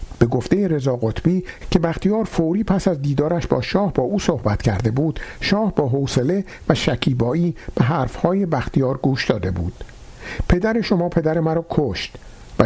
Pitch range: 125-170 Hz